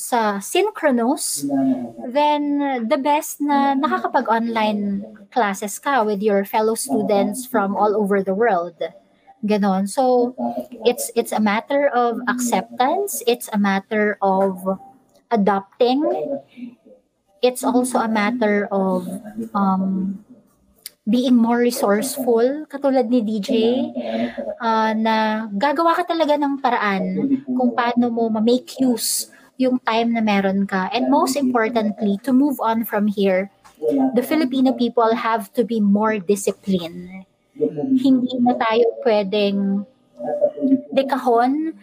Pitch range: 210-265 Hz